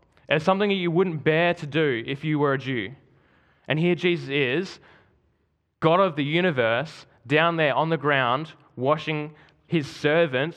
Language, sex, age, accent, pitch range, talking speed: English, male, 20-39, Australian, 125-160 Hz, 165 wpm